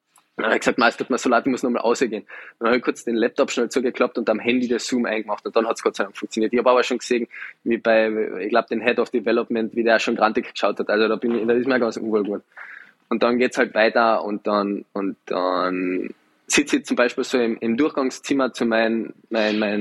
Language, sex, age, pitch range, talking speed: German, male, 20-39, 110-130 Hz, 250 wpm